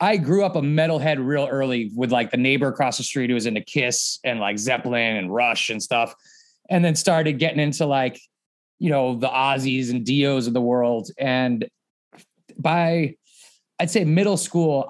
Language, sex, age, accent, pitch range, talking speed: English, male, 30-49, American, 140-180 Hz, 185 wpm